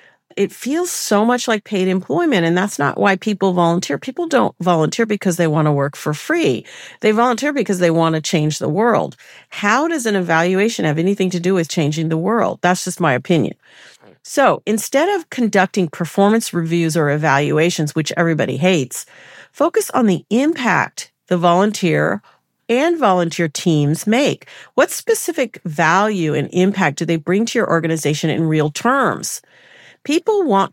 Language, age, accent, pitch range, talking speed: English, 50-69, American, 165-240 Hz, 165 wpm